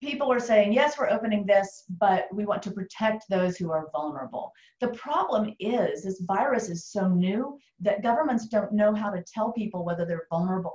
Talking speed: 195 wpm